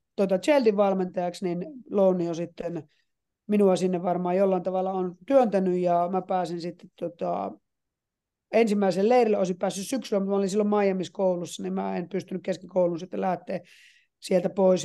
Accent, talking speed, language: native, 150 wpm, Finnish